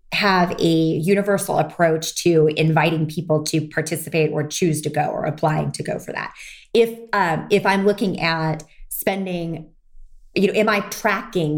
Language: English